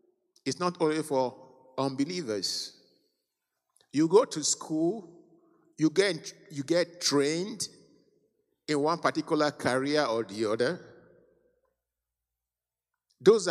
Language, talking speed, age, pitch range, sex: English, 95 wpm, 50-69, 105-180 Hz, male